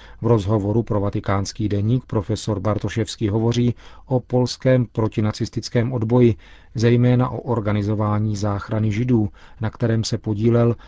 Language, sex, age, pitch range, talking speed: Czech, male, 40-59, 105-120 Hz, 115 wpm